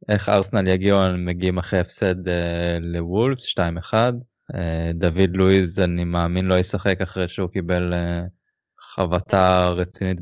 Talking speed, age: 130 wpm, 20-39